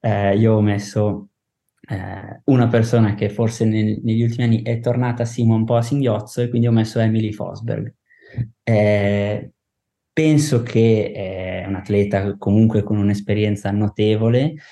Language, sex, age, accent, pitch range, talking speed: Italian, male, 20-39, native, 100-115 Hz, 145 wpm